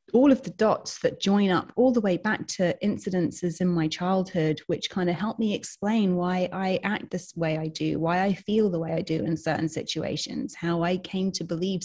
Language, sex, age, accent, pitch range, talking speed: English, female, 30-49, British, 160-195 Hz, 225 wpm